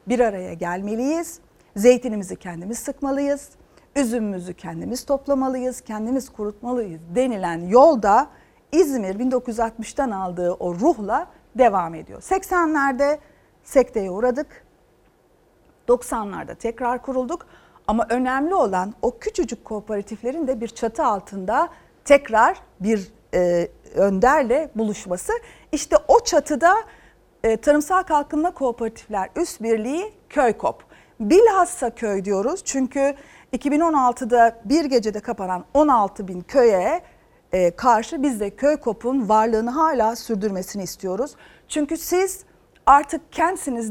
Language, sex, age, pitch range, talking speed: Turkish, female, 50-69, 215-295 Hz, 100 wpm